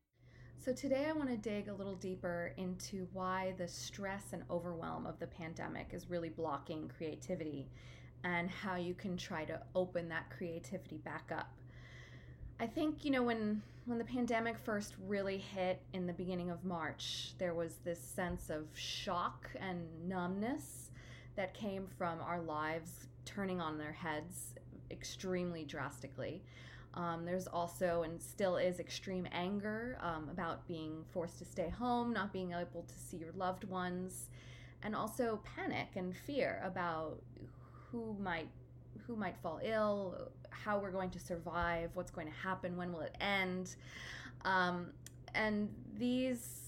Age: 20-39